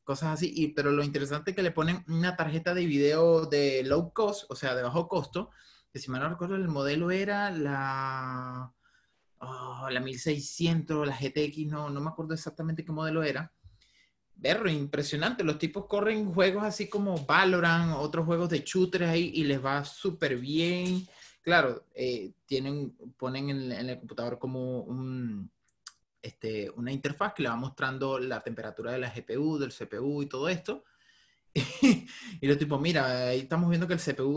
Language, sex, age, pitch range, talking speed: Spanish, male, 30-49, 130-170 Hz, 175 wpm